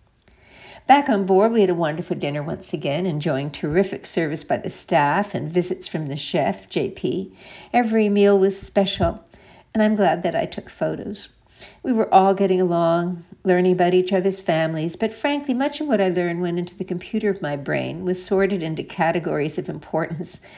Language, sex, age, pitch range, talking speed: English, female, 60-79, 170-200 Hz, 185 wpm